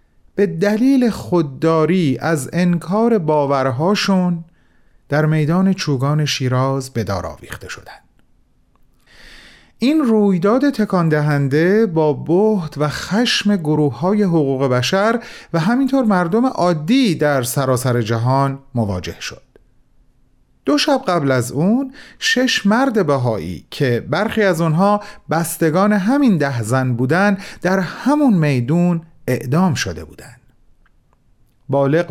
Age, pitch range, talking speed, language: 40-59, 130-195 Hz, 105 wpm, Persian